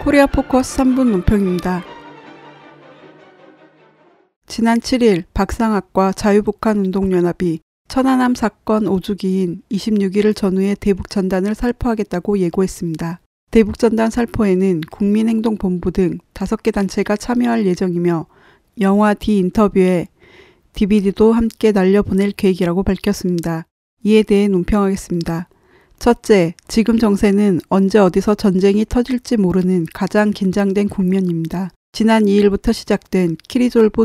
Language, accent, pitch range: Korean, native, 185-220 Hz